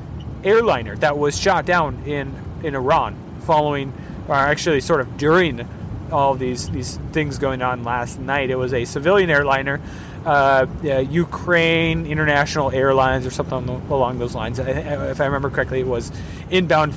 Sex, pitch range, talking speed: male, 130-165 Hz, 160 wpm